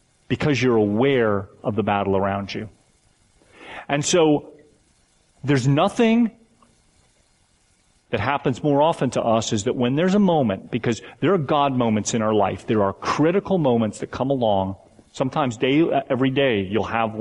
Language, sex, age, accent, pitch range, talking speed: English, male, 40-59, American, 105-145 Hz, 155 wpm